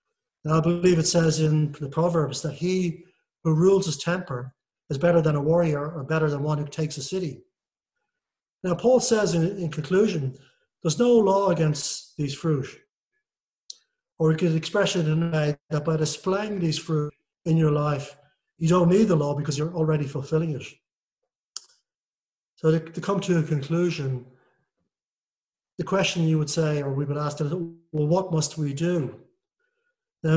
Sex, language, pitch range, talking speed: male, English, 145-180 Hz, 170 wpm